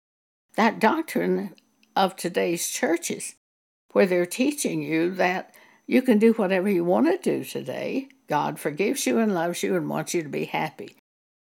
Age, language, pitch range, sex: 60-79, English, 185-265 Hz, female